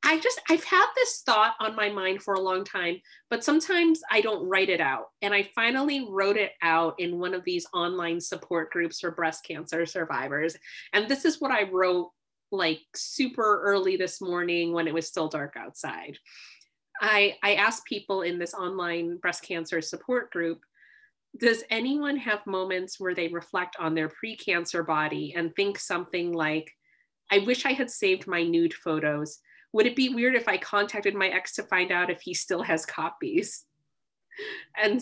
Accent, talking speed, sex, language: American, 180 wpm, female, English